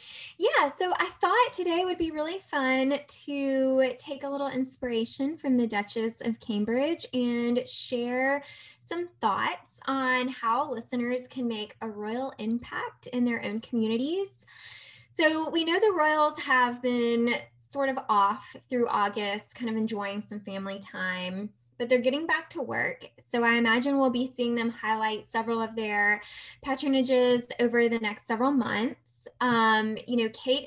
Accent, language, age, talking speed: American, English, 10-29, 155 wpm